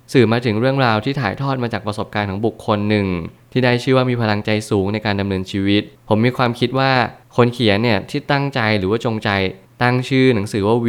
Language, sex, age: Thai, male, 20-39